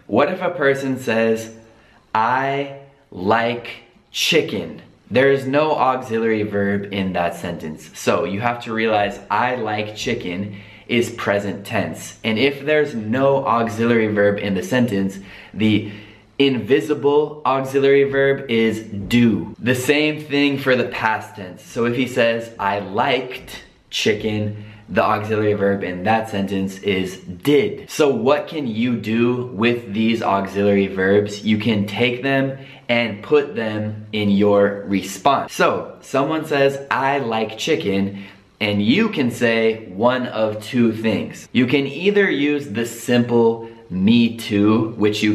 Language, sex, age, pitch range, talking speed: Italian, male, 20-39, 100-130 Hz, 140 wpm